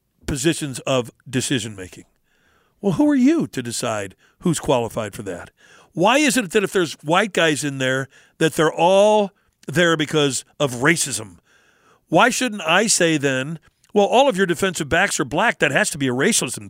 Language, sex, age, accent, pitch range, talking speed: English, male, 50-69, American, 145-205 Hz, 175 wpm